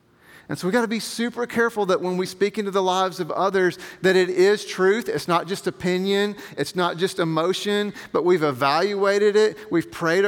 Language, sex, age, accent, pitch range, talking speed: English, male, 40-59, American, 170-210 Hz, 205 wpm